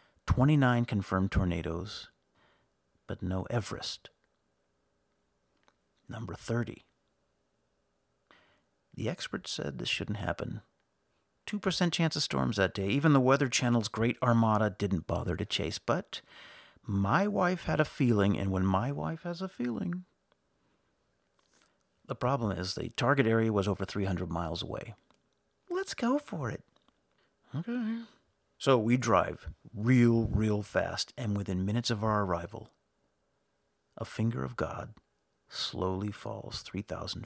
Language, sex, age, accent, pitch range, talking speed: English, male, 50-69, American, 100-125 Hz, 125 wpm